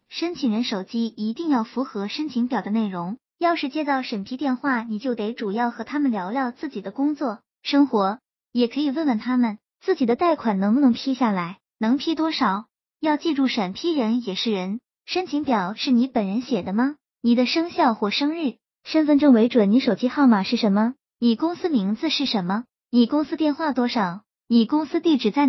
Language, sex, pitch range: Chinese, male, 220-290 Hz